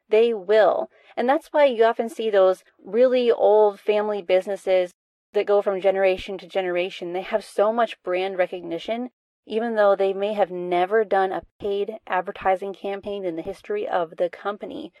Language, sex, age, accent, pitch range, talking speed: English, female, 30-49, American, 190-235 Hz, 170 wpm